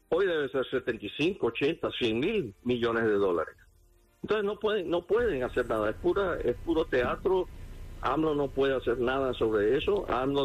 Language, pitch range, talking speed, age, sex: English, 125-190 Hz, 170 wpm, 50-69, male